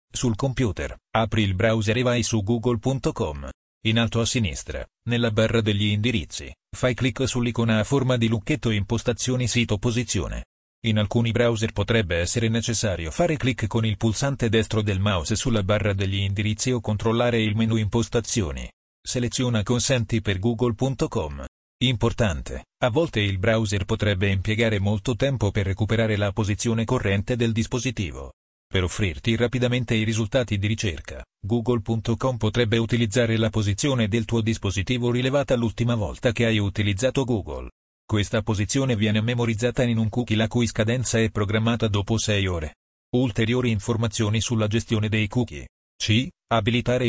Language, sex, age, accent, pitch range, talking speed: Italian, male, 40-59, native, 105-120 Hz, 145 wpm